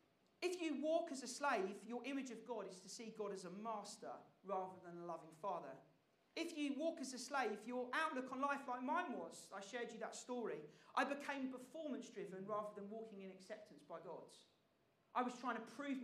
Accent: British